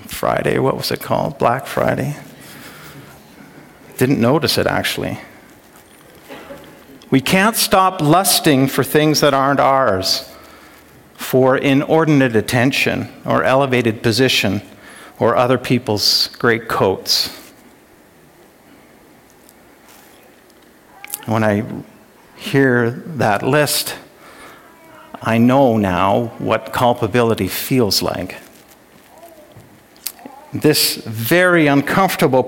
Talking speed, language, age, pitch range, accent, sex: 85 wpm, English, 50-69, 115-145 Hz, American, male